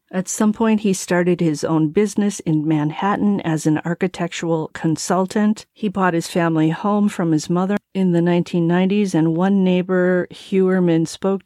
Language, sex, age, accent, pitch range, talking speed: English, female, 40-59, American, 170-200 Hz, 155 wpm